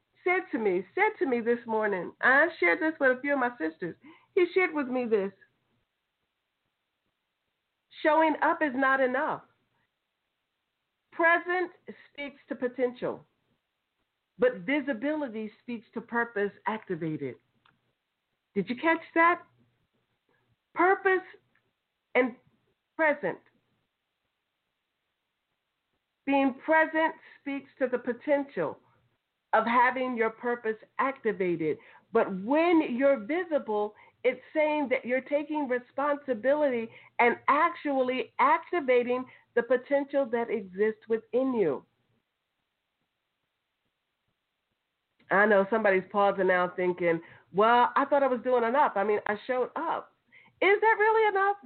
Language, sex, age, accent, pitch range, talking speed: English, female, 50-69, American, 220-315 Hz, 110 wpm